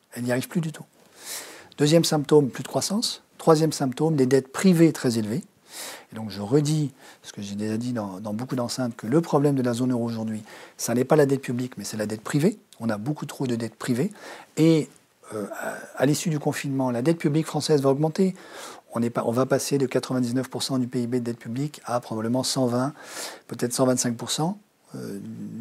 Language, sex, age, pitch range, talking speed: French, male, 40-59, 120-155 Hz, 200 wpm